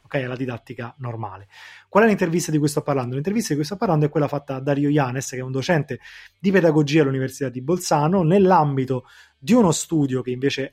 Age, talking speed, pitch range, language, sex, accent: 20-39, 205 wpm, 130-165 Hz, Italian, male, native